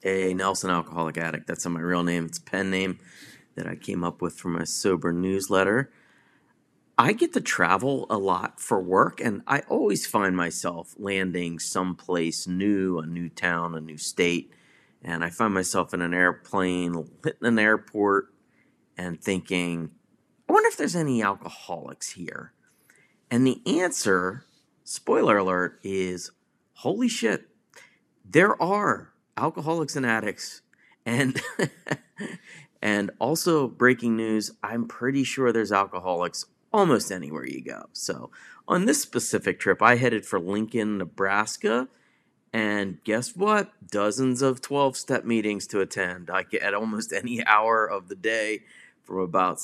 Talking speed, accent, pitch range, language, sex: 145 wpm, American, 90-115 Hz, English, male